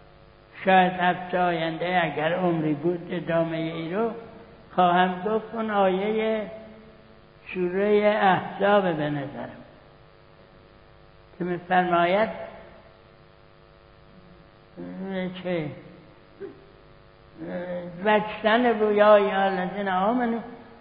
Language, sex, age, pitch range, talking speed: Persian, male, 60-79, 170-215 Hz, 60 wpm